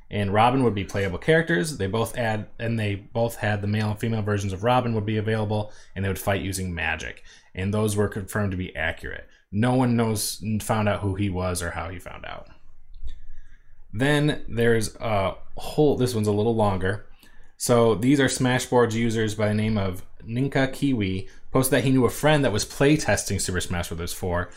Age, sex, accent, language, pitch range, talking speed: 20-39, male, American, English, 100-125 Hz, 200 wpm